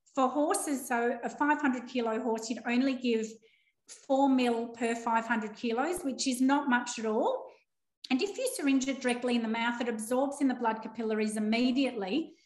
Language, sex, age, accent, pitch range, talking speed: English, female, 40-59, Australian, 220-270 Hz, 180 wpm